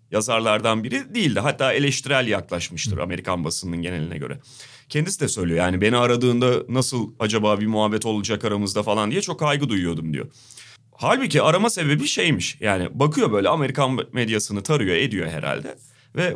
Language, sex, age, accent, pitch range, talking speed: Turkish, male, 30-49, native, 105-145 Hz, 150 wpm